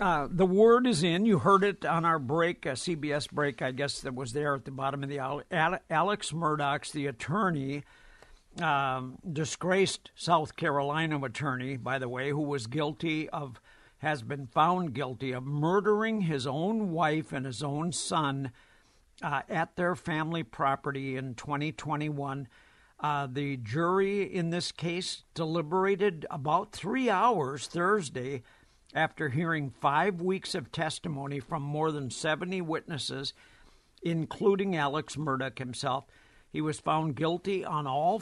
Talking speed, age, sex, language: 145 wpm, 60-79, male, English